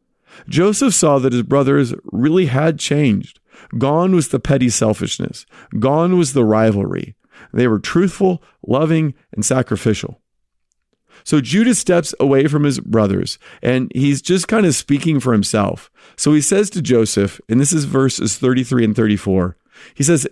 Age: 40-59